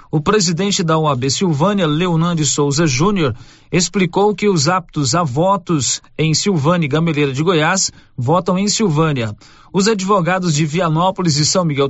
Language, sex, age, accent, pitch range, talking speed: Portuguese, male, 40-59, Brazilian, 150-195 Hz, 150 wpm